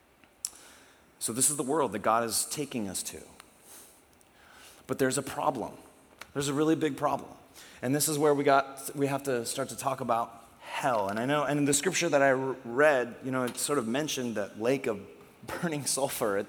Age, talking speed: 30-49, 205 wpm